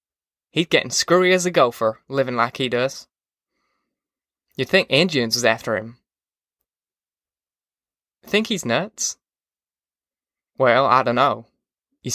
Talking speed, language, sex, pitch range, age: 120 wpm, English, male, 120-155 Hz, 10-29